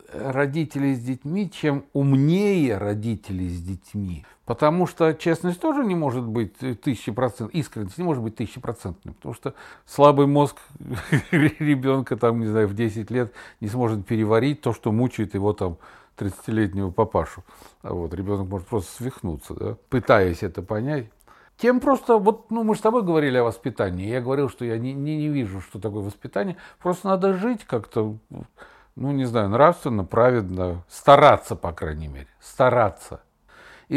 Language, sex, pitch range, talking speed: Russian, male, 110-160 Hz, 160 wpm